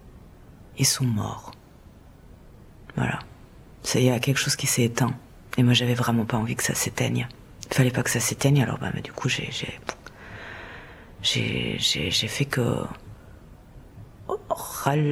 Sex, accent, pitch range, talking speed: female, French, 115-140 Hz, 155 wpm